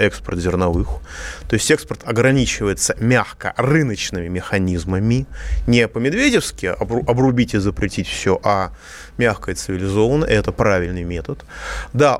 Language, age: Russian, 20-39